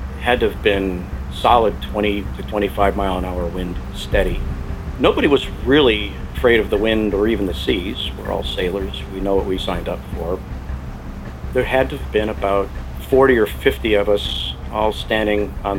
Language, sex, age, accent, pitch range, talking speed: English, male, 50-69, American, 80-110 Hz, 180 wpm